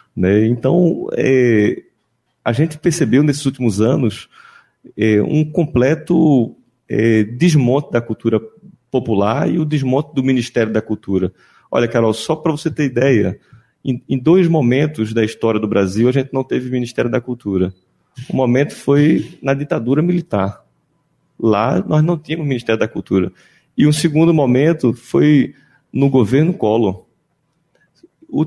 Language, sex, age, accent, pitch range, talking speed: Portuguese, male, 30-49, Brazilian, 115-155 Hz, 145 wpm